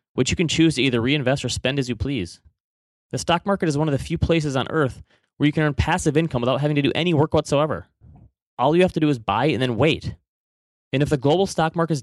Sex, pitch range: male, 115-150 Hz